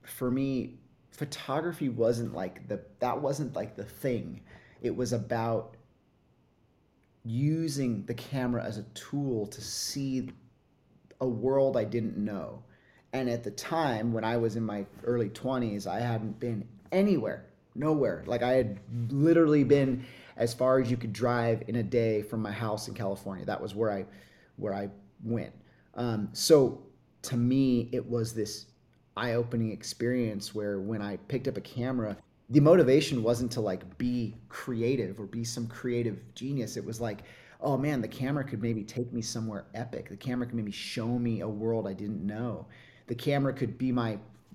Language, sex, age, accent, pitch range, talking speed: English, male, 30-49, American, 110-130 Hz, 170 wpm